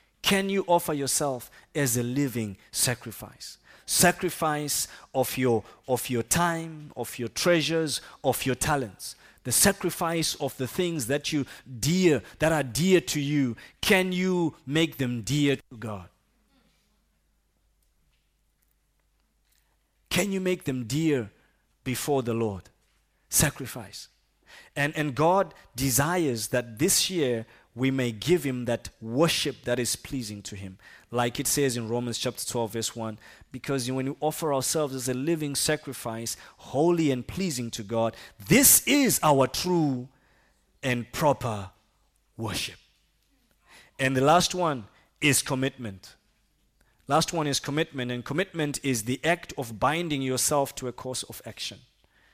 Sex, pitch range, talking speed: male, 115-155 Hz, 140 wpm